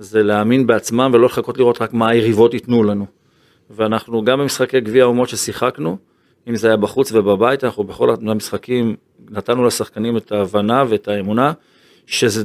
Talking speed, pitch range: 155 wpm, 110-130 Hz